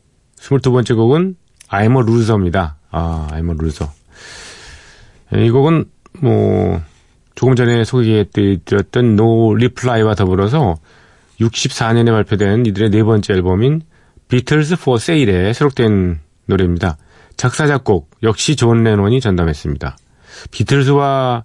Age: 40-59